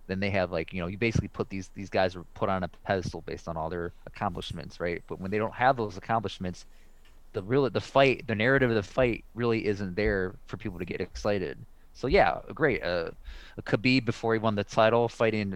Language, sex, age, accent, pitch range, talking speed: English, male, 20-39, American, 95-115 Hz, 230 wpm